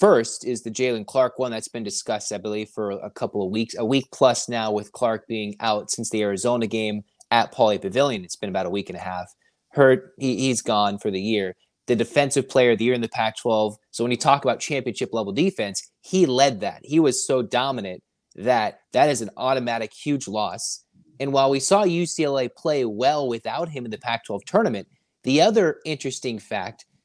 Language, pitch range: English, 110-140 Hz